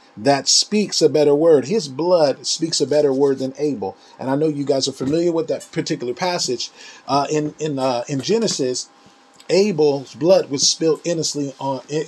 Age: 40-59